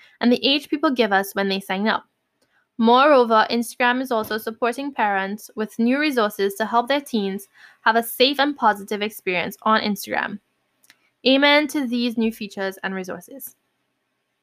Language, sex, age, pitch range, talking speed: English, female, 10-29, 200-250 Hz, 160 wpm